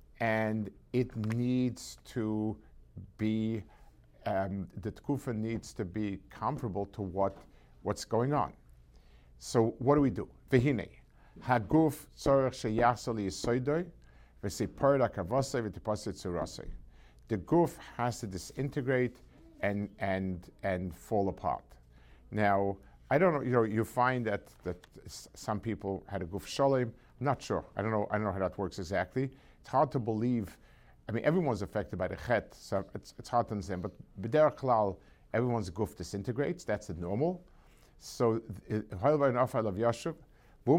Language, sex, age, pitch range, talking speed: English, male, 50-69, 95-125 Hz, 135 wpm